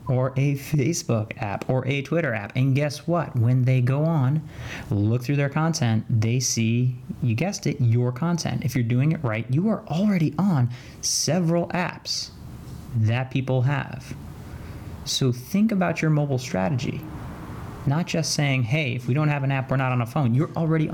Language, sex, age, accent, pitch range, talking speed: English, male, 30-49, American, 115-155 Hz, 180 wpm